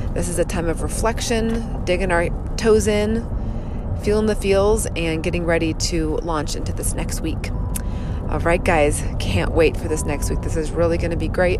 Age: 30-49